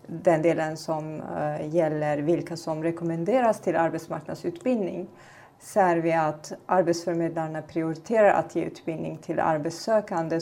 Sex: female